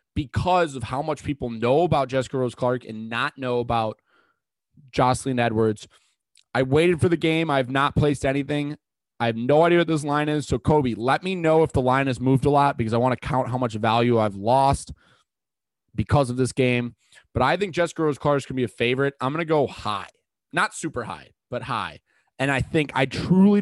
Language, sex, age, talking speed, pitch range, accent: English, male, 20-39, 220 wpm, 120-150 Hz, American